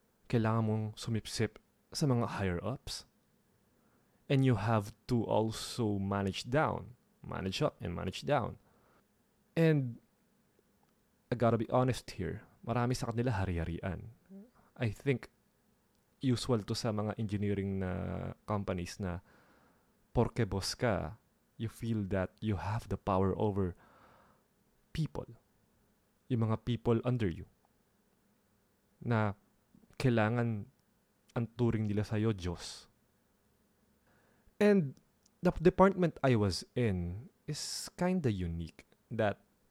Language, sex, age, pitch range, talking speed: Filipino, male, 20-39, 100-125 Hz, 105 wpm